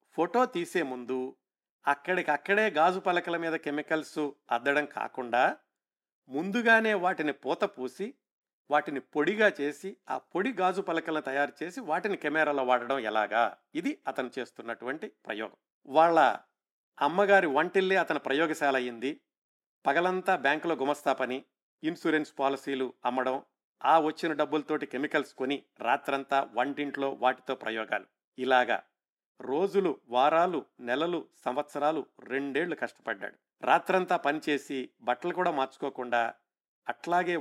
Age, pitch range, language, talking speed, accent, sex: 50-69, 130-170 Hz, Telugu, 105 wpm, native, male